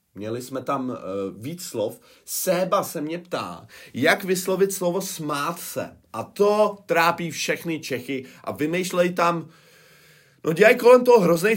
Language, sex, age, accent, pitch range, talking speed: Czech, male, 30-49, native, 105-165 Hz, 145 wpm